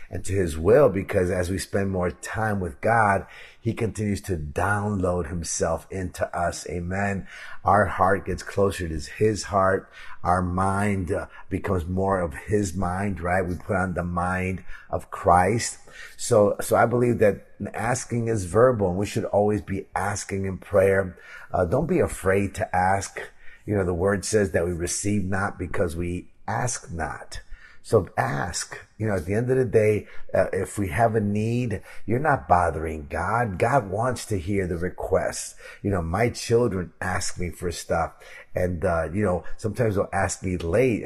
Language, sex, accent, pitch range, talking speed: English, male, American, 90-110 Hz, 175 wpm